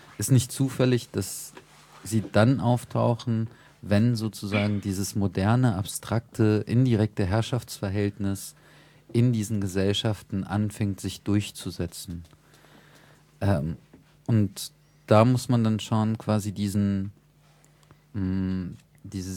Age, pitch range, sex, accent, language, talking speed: 40-59, 100-120 Hz, male, German, German, 90 wpm